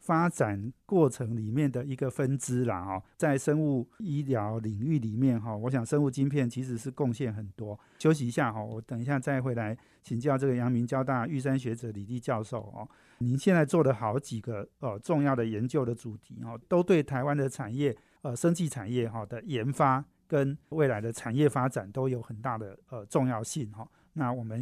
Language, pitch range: Chinese, 120-140 Hz